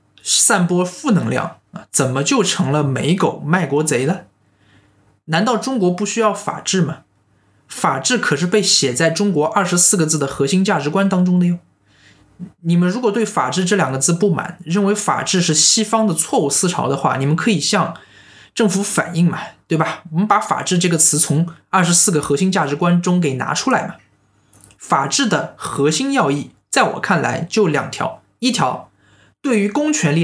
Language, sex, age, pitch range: Chinese, male, 20-39, 140-205 Hz